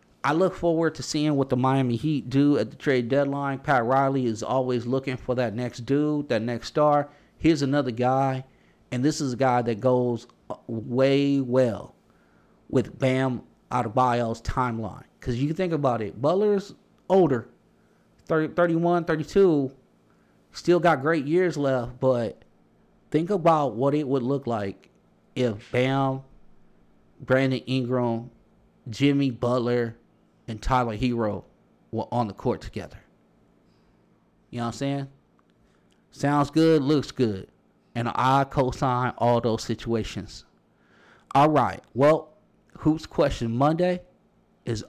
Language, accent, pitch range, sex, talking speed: English, American, 125-150 Hz, male, 140 wpm